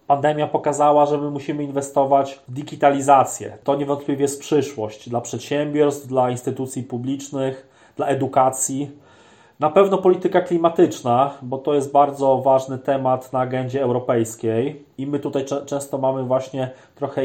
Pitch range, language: 130-150 Hz, Polish